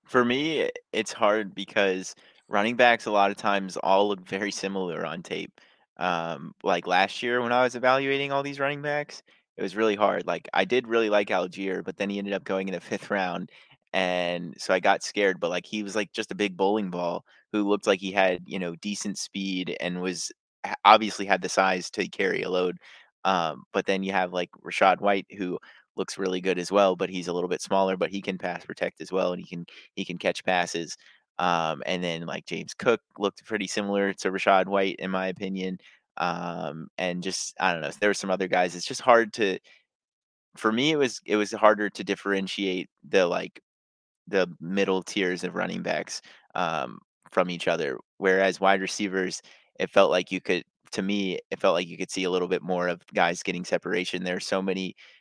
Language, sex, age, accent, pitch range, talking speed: English, male, 20-39, American, 90-105 Hz, 215 wpm